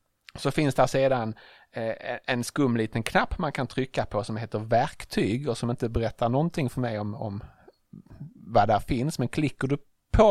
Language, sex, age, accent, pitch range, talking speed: English, male, 30-49, Norwegian, 110-140 Hz, 180 wpm